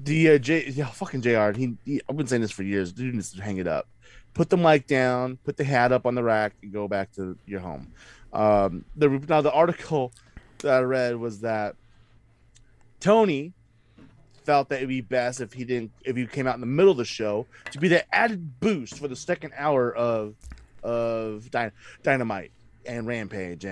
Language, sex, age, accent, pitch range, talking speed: English, male, 20-39, American, 110-145 Hz, 205 wpm